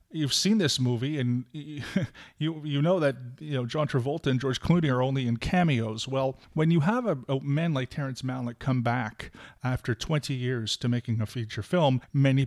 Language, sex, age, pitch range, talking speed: English, male, 30-49, 125-150 Hz, 195 wpm